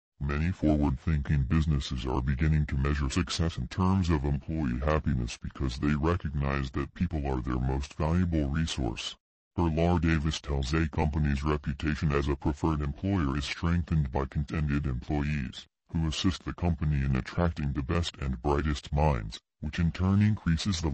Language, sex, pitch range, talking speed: English, female, 70-85 Hz, 155 wpm